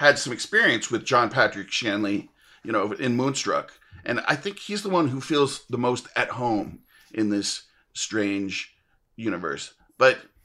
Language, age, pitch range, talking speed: English, 40-59, 110-130 Hz, 160 wpm